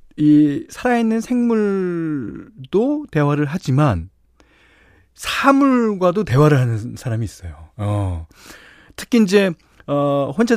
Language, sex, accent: Korean, male, native